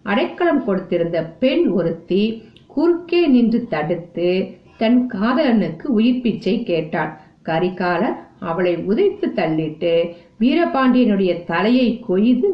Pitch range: 175-235 Hz